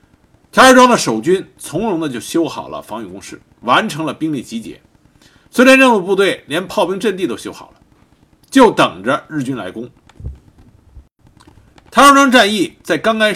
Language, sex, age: Chinese, male, 50-69